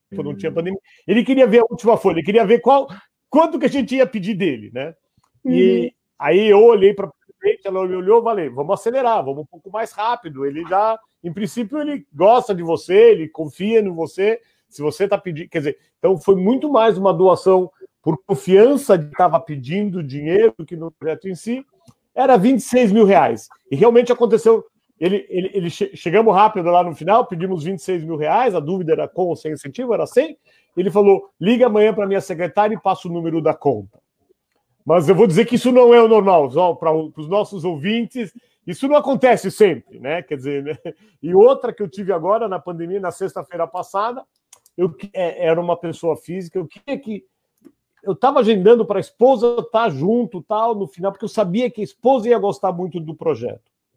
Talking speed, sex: 205 wpm, male